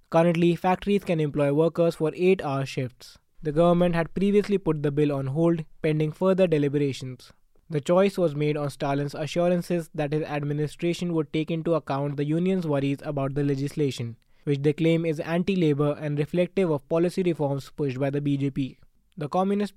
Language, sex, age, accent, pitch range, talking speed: English, male, 20-39, Indian, 140-170 Hz, 170 wpm